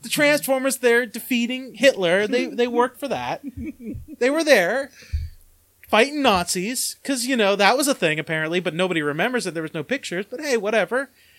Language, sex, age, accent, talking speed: English, male, 30-49, American, 180 wpm